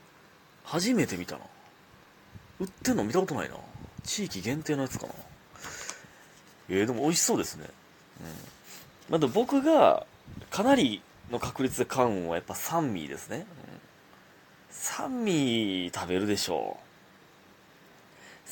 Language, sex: Japanese, male